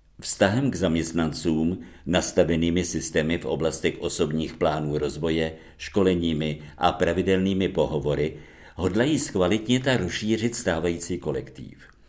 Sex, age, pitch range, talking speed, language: male, 50-69, 75-95 Hz, 95 wpm, Czech